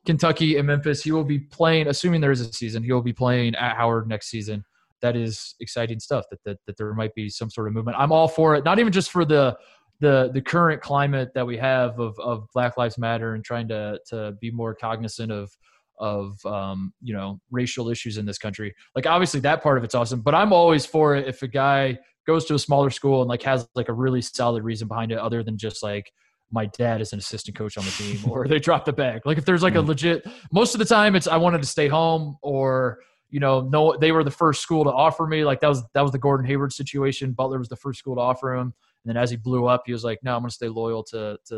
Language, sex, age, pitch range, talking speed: English, male, 20-39, 115-145 Hz, 260 wpm